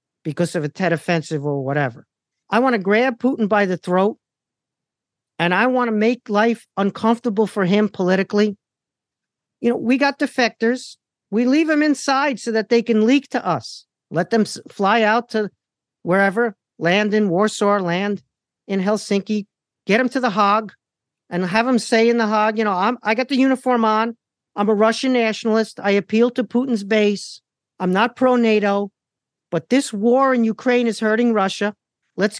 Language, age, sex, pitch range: English, 50-69, male, 185-235 Hz